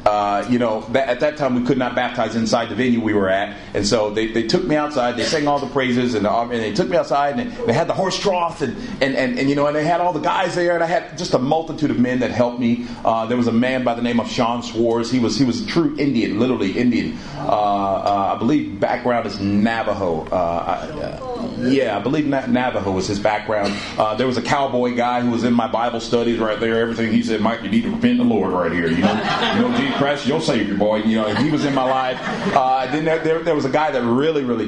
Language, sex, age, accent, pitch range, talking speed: English, male, 30-49, American, 115-135 Hz, 270 wpm